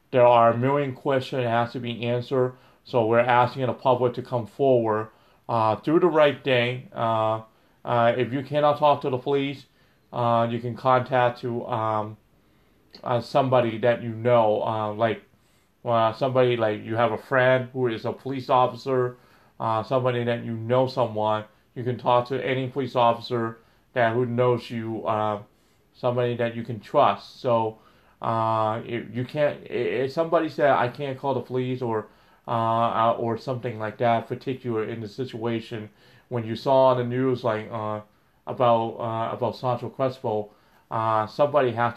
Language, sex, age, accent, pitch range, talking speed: English, male, 30-49, American, 115-130 Hz, 170 wpm